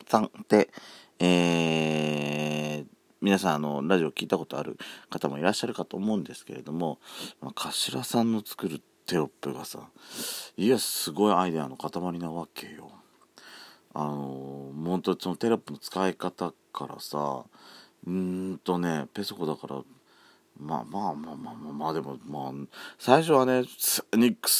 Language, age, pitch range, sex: Japanese, 40-59, 75-120 Hz, male